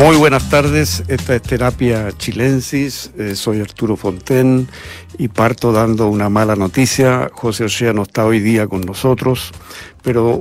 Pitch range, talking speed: 100-120 Hz, 150 wpm